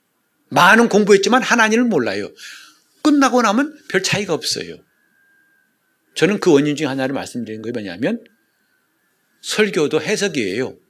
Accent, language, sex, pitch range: native, Korean, male, 140-220 Hz